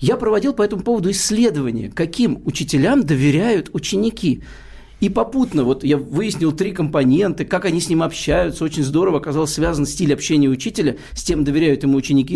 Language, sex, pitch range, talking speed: Russian, male, 160-255 Hz, 165 wpm